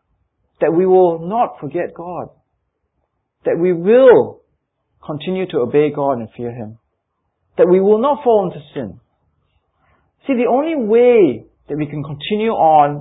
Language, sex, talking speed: English, male, 150 wpm